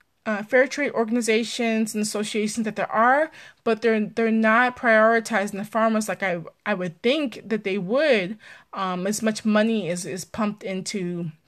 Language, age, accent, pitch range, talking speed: English, 20-39, American, 195-230 Hz, 165 wpm